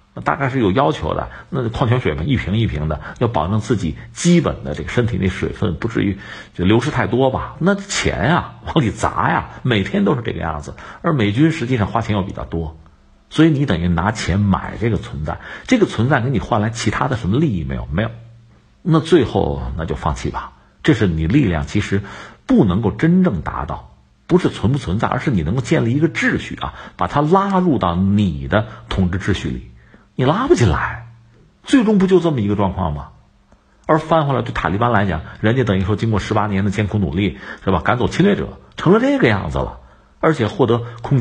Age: 50-69